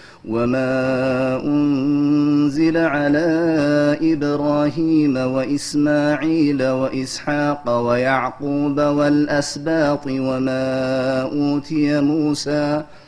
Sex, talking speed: male, 50 wpm